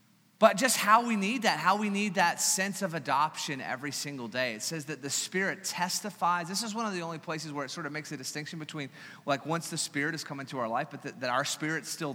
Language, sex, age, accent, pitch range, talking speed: English, male, 30-49, American, 150-190 Hz, 255 wpm